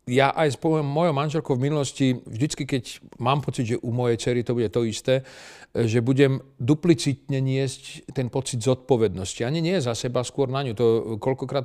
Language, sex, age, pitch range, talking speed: Slovak, male, 40-59, 120-150 Hz, 175 wpm